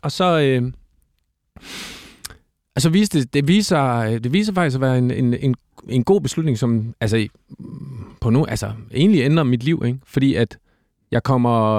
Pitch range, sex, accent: 110-140 Hz, male, native